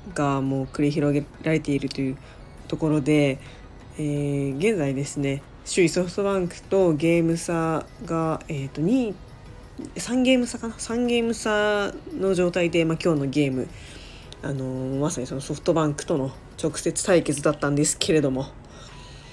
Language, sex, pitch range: Japanese, female, 140-175 Hz